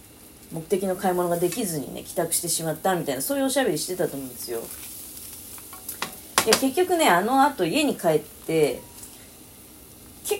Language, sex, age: Japanese, female, 30-49